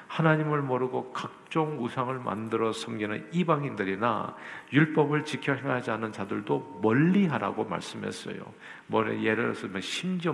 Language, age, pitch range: Korean, 50-69, 110-155 Hz